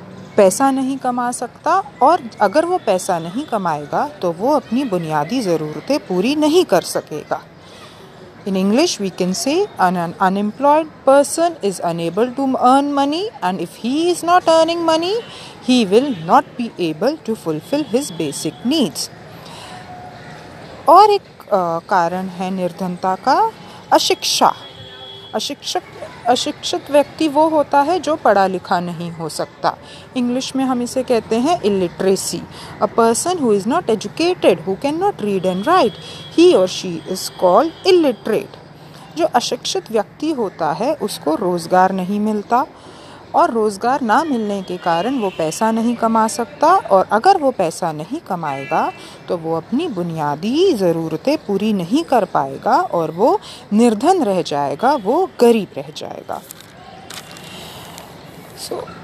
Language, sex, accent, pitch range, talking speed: English, female, Indian, 185-285 Hz, 115 wpm